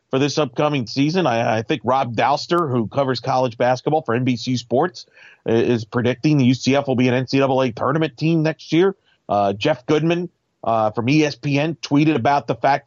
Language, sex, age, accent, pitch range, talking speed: English, male, 40-59, American, 125-160 Hz, 175 wpm